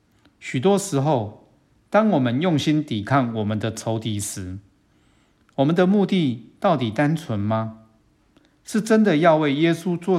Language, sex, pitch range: Chinese, male, 105-140 Hz